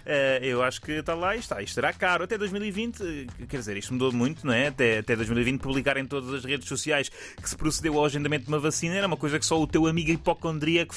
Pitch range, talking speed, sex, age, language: 135-185 Hz, 245 wpm, male, 20-39, Portuguese